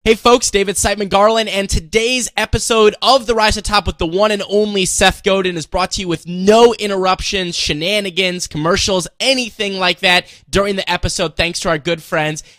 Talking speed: 195 wpm